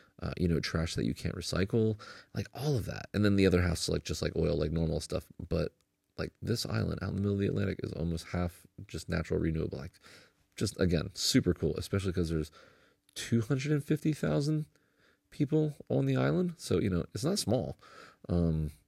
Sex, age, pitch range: male, 30-49, 85-110 Hz